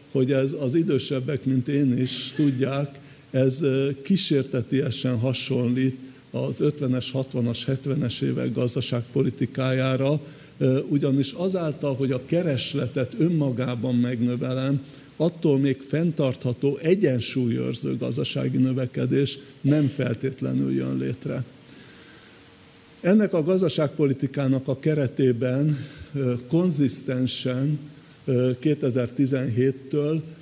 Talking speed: 80 wpm